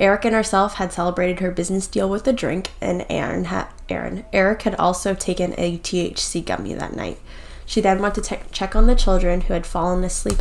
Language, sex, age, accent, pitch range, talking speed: English, female, 10-29, American, 170-190 Hz, 215 wpm